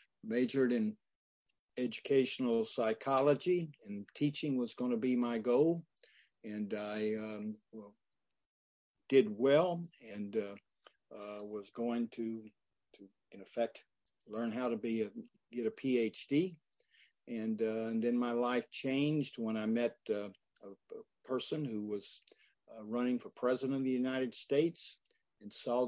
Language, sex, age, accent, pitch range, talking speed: English, male, 60-79, American, 110-135 Hz, 140 wpm